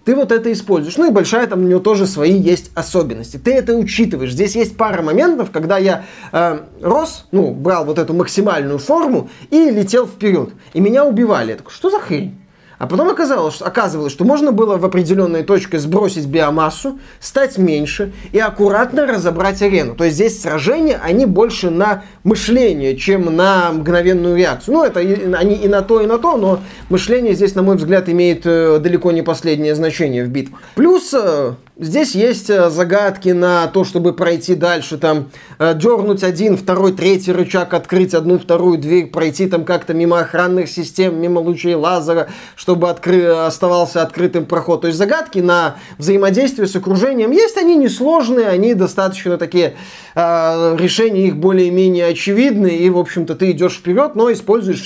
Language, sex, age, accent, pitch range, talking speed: Russian, male, 20-39, native, 170-215 Hz, 165 wpm